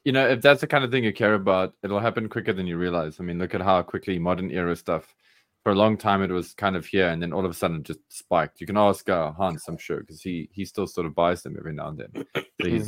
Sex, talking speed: male, 300 wpm